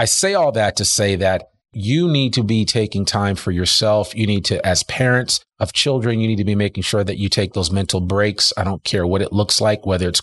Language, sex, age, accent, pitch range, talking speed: English, male, 40-59, American, 95-115 Hz, 250 wpm